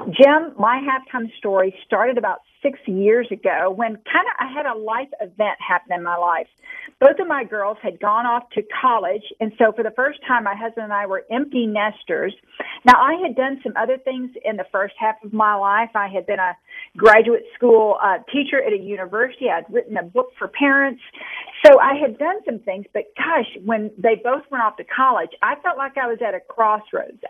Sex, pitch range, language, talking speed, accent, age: female, 210-285 Hz, English, 215 wpm, American, 50-69